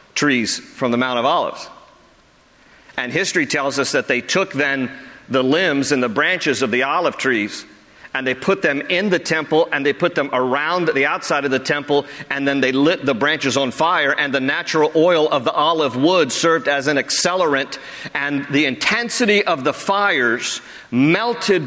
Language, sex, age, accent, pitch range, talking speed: English, male, 50-69, American, 140-185 Hz, 185 wpm